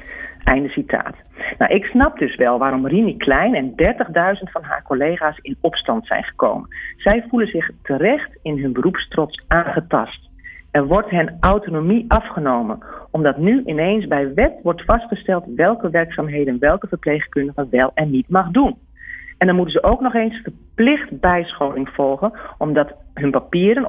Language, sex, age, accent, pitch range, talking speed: Dutch, female, 40-59, Dutch, 140-205 Hz, 155 wpm